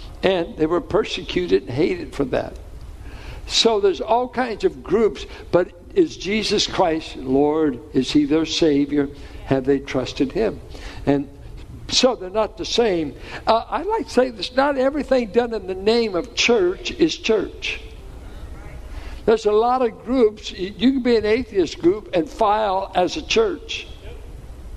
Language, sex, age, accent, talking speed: English, male, 60-79, American, 155 wpm